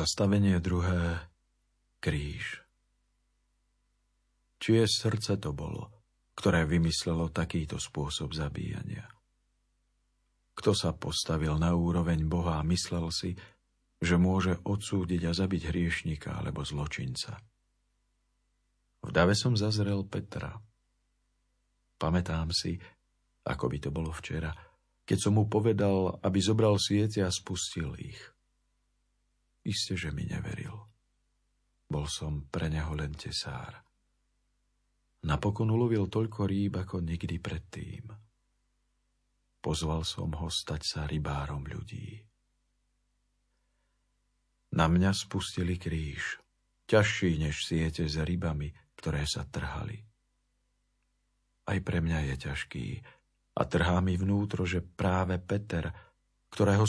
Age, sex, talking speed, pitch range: 50-69, male, 105 wpm, 80-105 Hz